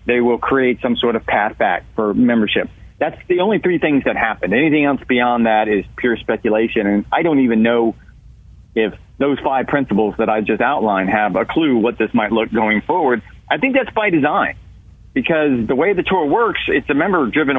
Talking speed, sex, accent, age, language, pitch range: 205 wpm, male, American, 40-59, English, 110-135 Hz